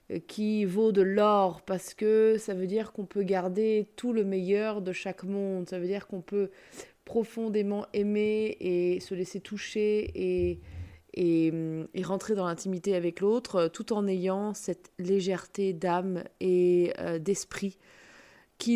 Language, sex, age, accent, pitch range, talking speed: French, female, 20-39, French, 175-220 Hz, 145 wpm